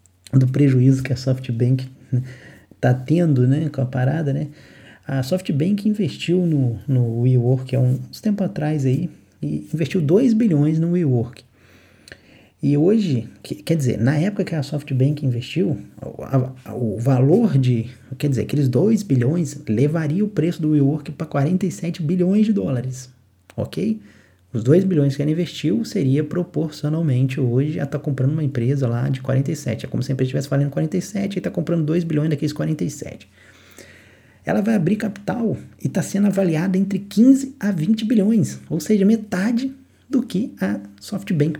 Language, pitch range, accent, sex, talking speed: English, 130-170 Hz, Brazilian, male, 165 wpm